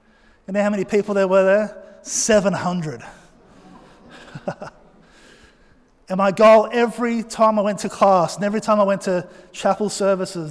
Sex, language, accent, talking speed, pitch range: male, English, Australian, 150 wpm, 185-215 Hz